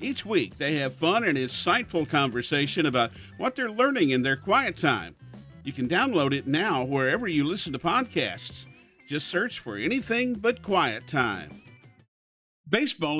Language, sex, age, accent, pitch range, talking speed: English, male, 50-69, American, 120-160 Hz, 155 wpm